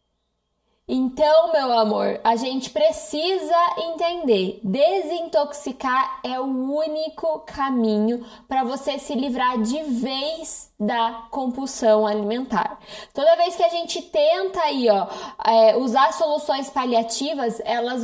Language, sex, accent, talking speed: Portuguese, female, Brazilian, 110 wpm